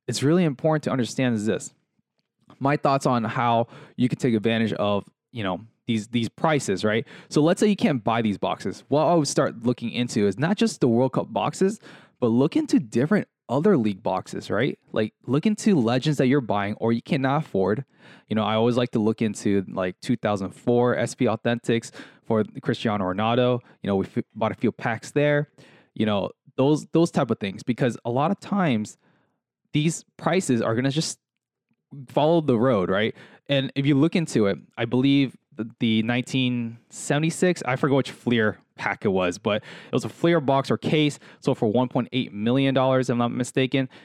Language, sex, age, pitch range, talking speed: English, male, 20-39, 115-145 Hz, 190 wpm